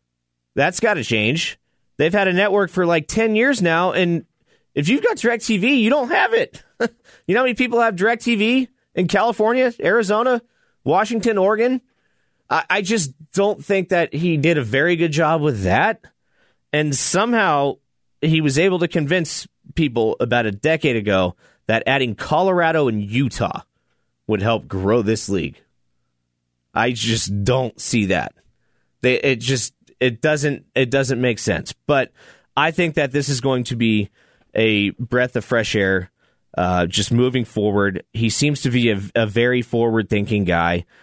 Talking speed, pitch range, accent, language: 160 wpm, 105-160 Hz, American, English